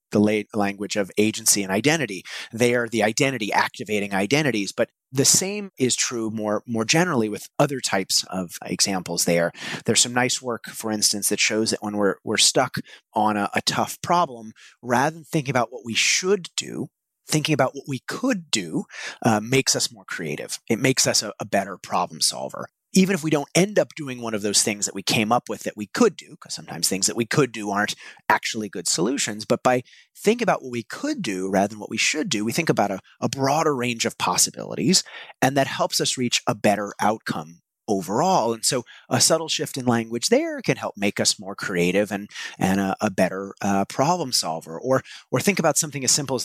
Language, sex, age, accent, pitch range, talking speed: English, male, 30-49, American, 105-135 Hz, 210 wpm